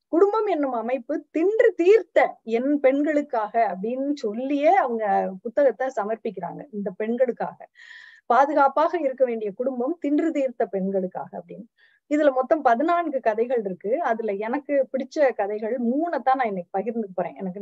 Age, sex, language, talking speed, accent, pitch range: 30-49, female, Tamil, 125 wpm, native, 220-300 Hz